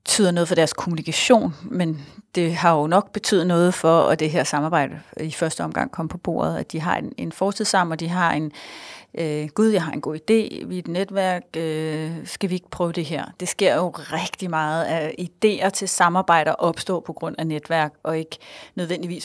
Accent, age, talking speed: native, 30-49, 210 wpm